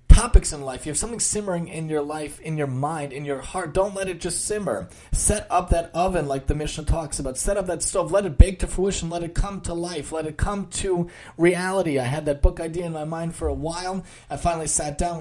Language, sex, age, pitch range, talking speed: English, male, 30-49, 150-185 Hz, 255 wpm